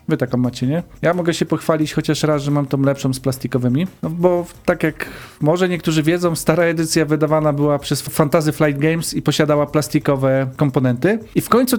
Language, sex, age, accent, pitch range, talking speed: Polish, male, 40-59, native, 140-175 Hz, 195 wpm